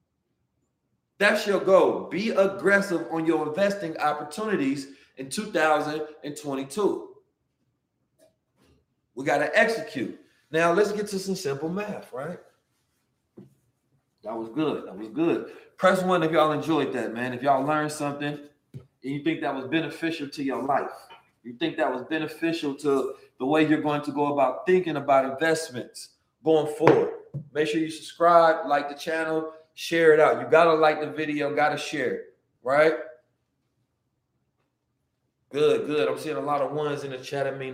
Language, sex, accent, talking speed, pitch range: English, male, American, 155 wpm, 140-165 Hz